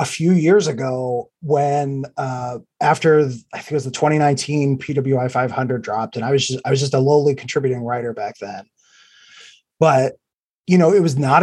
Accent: American